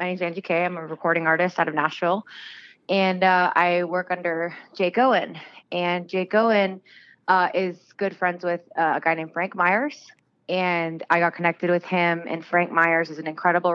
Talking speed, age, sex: 190 wpm, 20-39, female